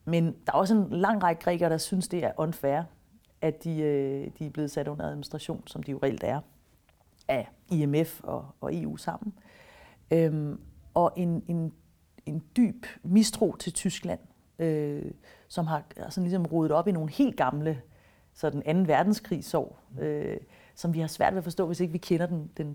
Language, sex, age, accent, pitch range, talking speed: Danish, female, 40-59, native, 150-190 Hz, 180 wpm